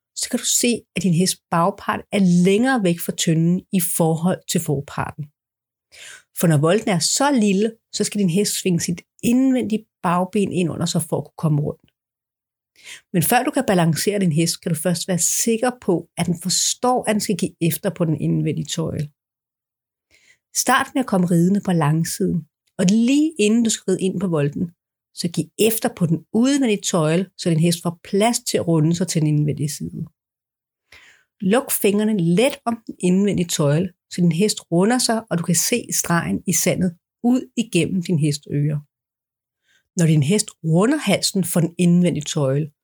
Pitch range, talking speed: 160-215 Hz, 185 wpm